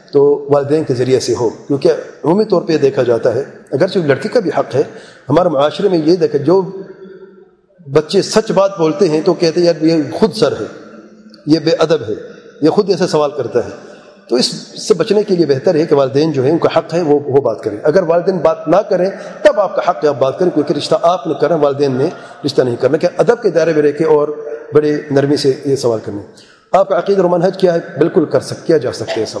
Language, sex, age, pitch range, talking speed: English, male, 40-59, 145-185 Hz, 190 wpm